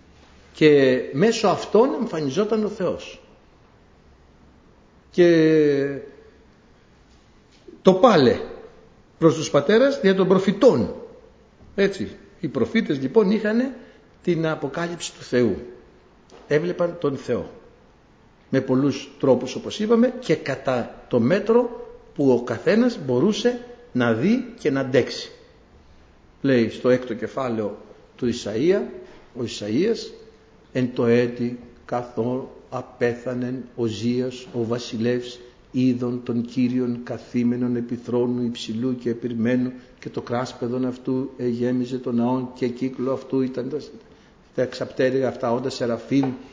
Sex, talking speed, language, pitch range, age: male, 110 wpm, Greek, 120-170 Hz, 60-79